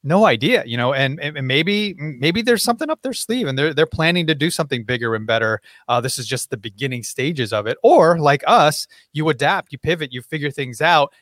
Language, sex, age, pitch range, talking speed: English, male, 30-49, 125-170 Hz, 230 wpm